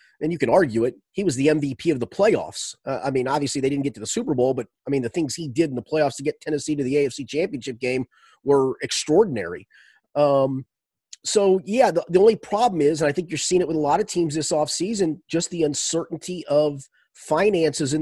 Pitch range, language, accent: 145-205 Hz, English, American